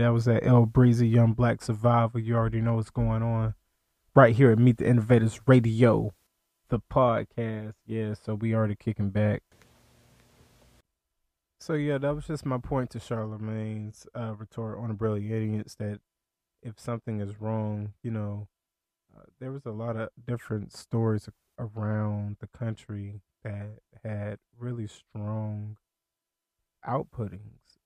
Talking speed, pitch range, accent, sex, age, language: 145 wpm, 105-120 Hz, American, male, 20-39, English